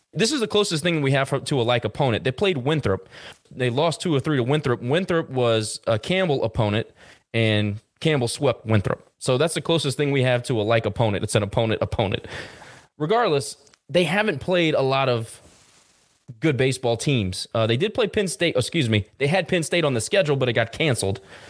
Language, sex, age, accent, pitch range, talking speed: English, male, 20-39, American, 115-150 Hz, 205 wpm